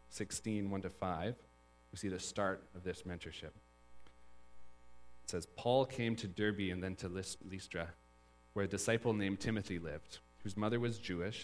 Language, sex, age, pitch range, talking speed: English, male, 40-59, 75-105 Hz, 150 wpm